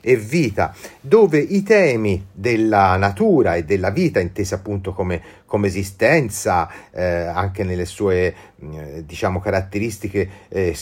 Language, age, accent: Italian, 40-59, native